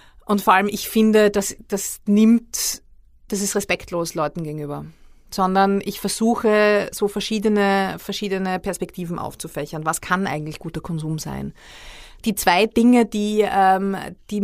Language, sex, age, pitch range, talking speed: German, female, 30-49, 165-205 Hz, 135 wpm